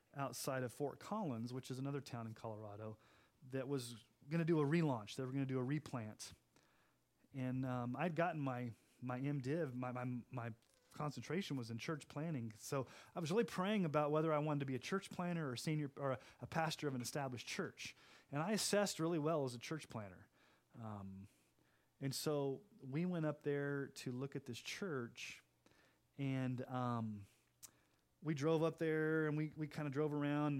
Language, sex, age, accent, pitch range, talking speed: English, male, 30-49, American, 120-150 Hz, 190 wpm